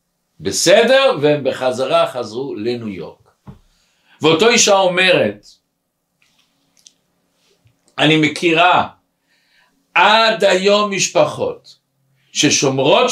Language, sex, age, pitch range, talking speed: Hebrew, male, 60-79, 150-210 Hz, 70 wpm